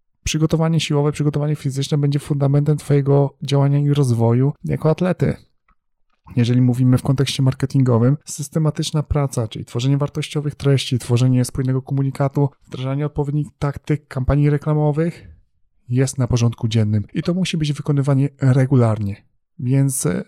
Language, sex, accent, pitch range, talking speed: Polish, male, native, 125-145 Hz, 125 wpm